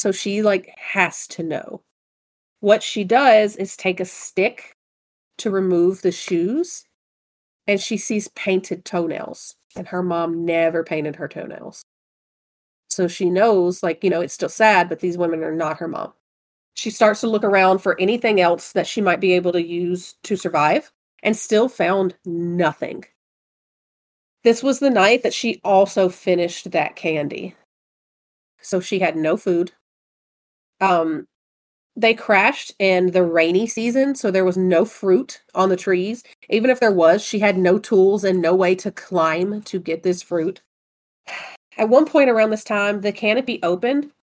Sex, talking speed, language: female, 165 wpm, English